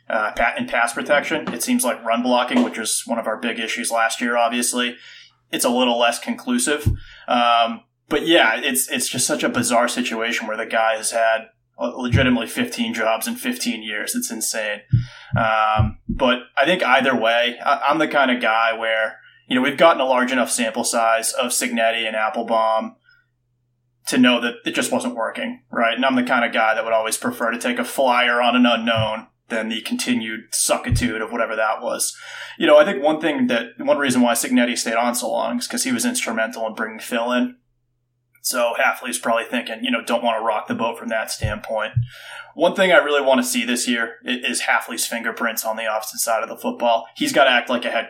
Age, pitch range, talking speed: 20-39, 115-160 Hz, 215 wpm